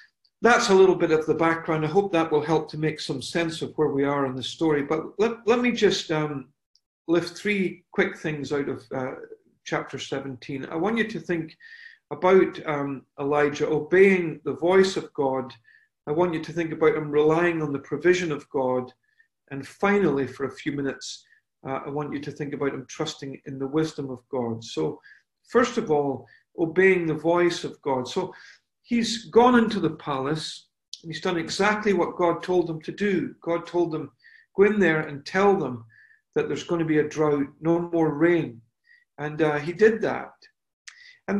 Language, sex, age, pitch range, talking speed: English, male, 50-69, 145-200 Hz, 195 wpm